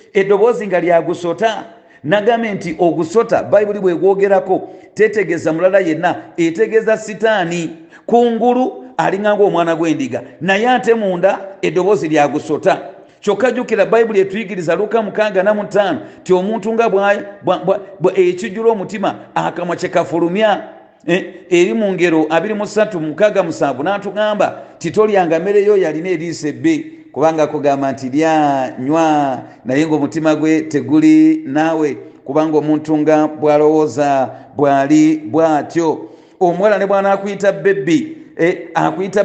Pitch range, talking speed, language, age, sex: 160-215 Hz, 120 wpm, English, 40-59, male